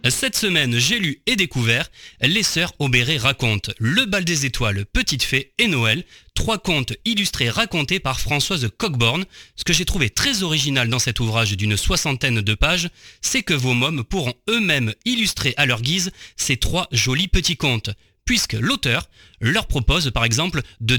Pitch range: 125-195 Hz